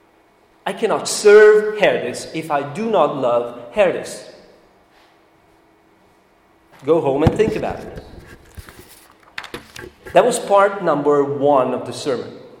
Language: English